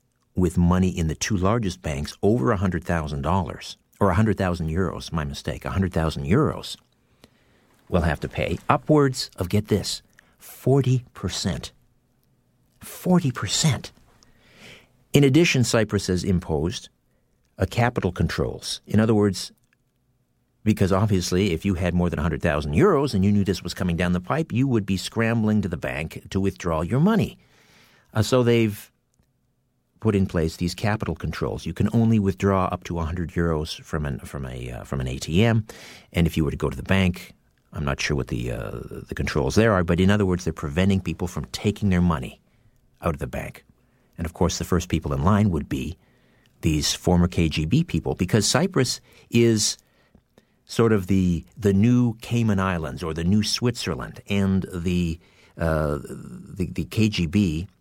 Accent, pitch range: American, 85-110 Hz